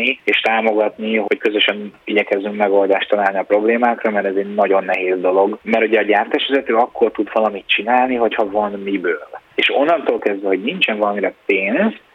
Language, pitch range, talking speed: Hungarian, 100-140 Hz, 165 wpm